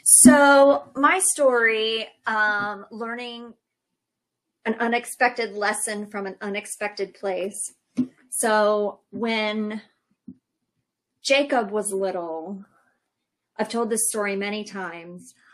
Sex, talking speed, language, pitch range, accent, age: female, 90 wpm, English, 195-240 Hz, American, 30-49